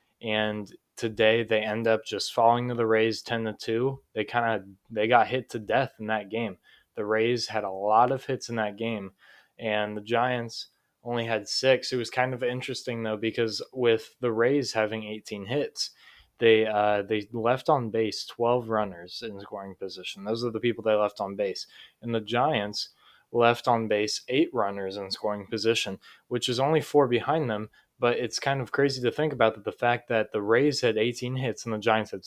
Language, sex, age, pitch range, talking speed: English, male, 20-39, 110-120 Hz, 205 wpm